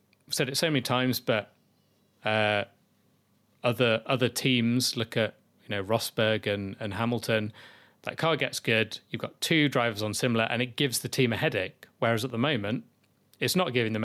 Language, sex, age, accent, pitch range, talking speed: English, male, 30-49, British, 110-125 Hz, 185 wpm